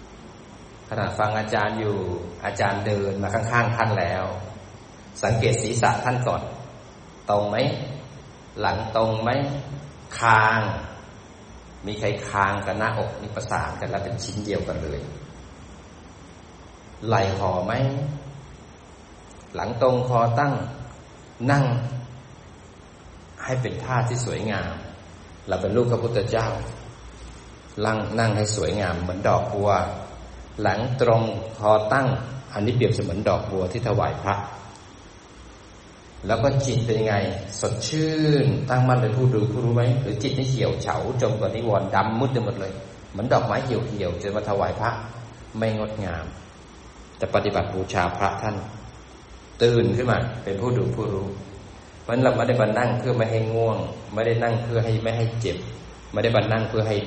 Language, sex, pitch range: Thai, male, 100-120 Hz